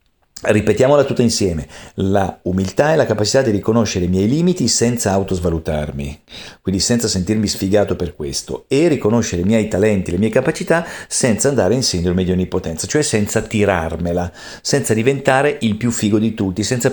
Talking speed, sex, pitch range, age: 165 wpm, male, 90-110 Hz, 50-69